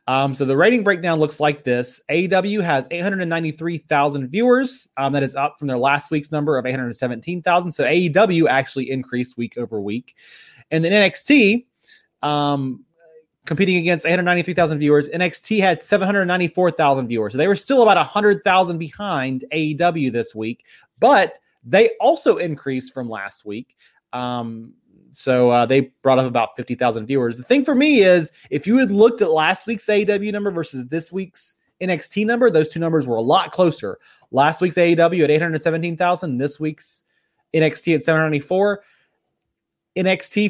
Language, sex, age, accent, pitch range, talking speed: English, male, 30-49, American, 135-185 Hz, 155 wpm